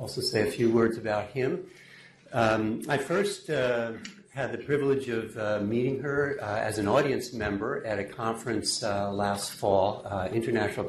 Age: 60-79